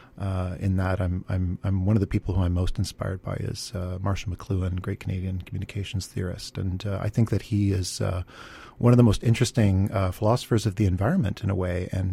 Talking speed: 225 wpm